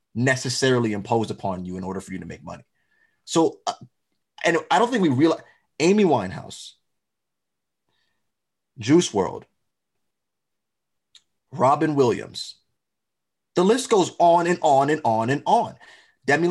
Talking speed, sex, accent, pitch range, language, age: 125 wpm, male, American, 130-200 Hz, English, 30-49